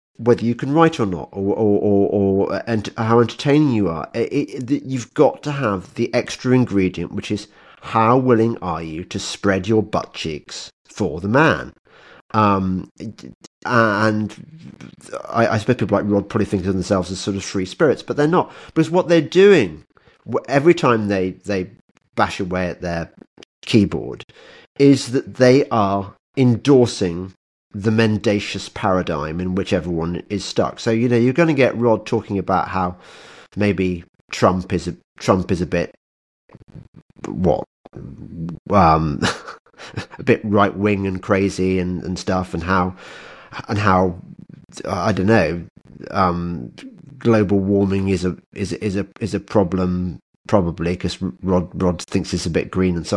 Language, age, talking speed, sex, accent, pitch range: English, 40-59, 160 wpm, male, British, 90-115 Hz